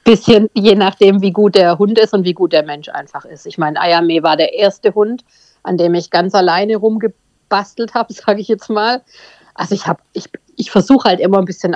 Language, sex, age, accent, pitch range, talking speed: German, female, 50-69, German, 180-225 Hz, 210 wpm